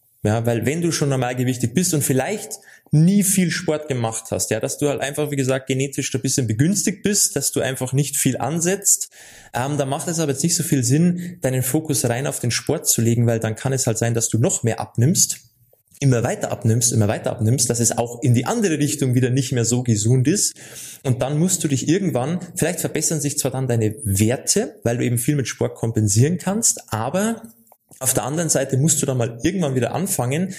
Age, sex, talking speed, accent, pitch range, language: 20-39, male, 220 wpm, German, 120-150 Hz, German